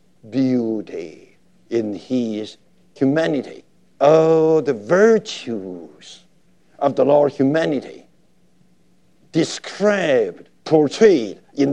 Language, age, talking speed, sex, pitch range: English, 60-79, 70 wpm, male, 135-170 Hz